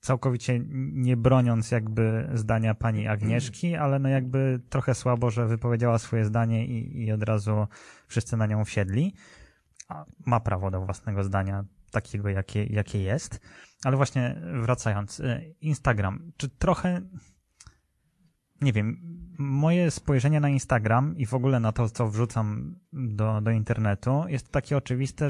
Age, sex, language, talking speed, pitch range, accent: 20-39, male, Polish, 140 wpm, 110-130 Hz, native